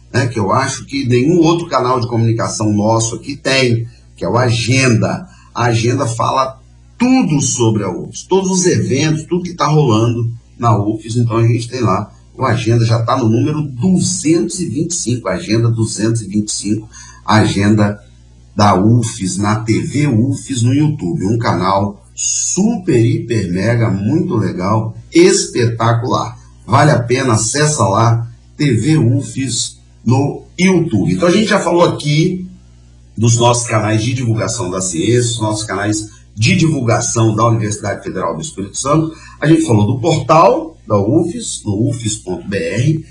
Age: 50-69